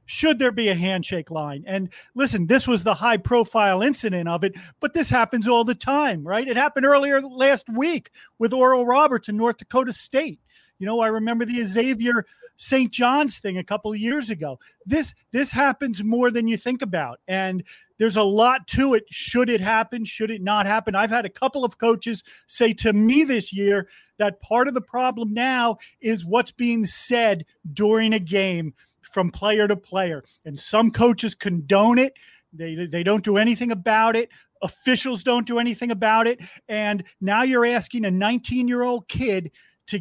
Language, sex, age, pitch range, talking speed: English, male, 40-59, 200-245 Hz, 185 wpm